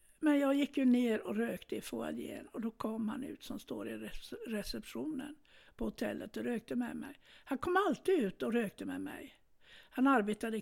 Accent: native